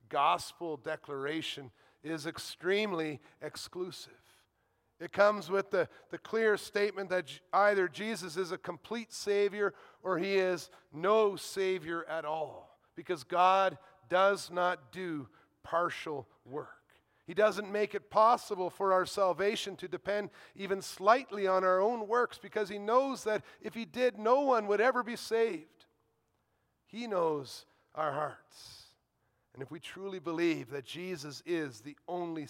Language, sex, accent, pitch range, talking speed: English, male, American, 165-210 Hz, 140 wpm